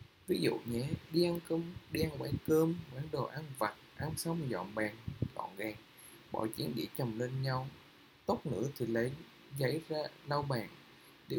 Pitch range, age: 120-155 Hz, 20-39